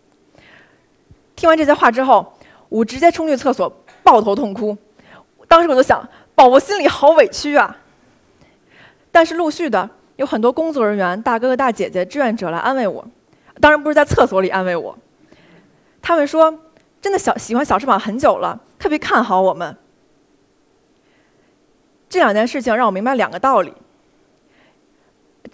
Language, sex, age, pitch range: Chinese, female, 20-39, 215-295 Hz